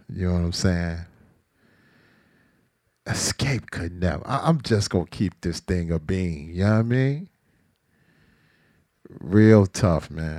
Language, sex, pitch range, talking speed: English, male, 90-140 Hz, 145 wpm